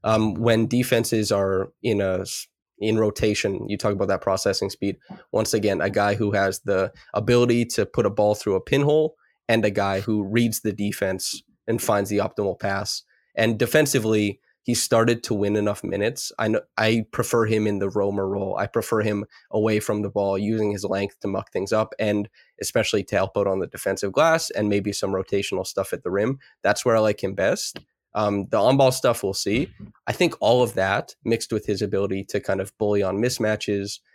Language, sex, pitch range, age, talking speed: English, male, 100-115 Hz, 20-39, 205 wpm